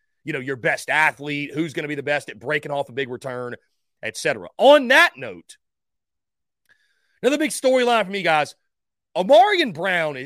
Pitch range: 155-250 Hz